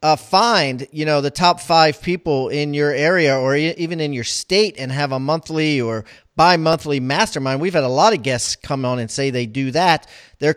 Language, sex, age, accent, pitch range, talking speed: English, male, 40-59, American, 135-175 Hz, 210 wpm